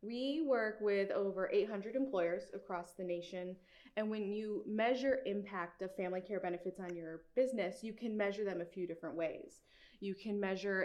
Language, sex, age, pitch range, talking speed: English, female, 20-39, 180-225 Hz, 175 wpm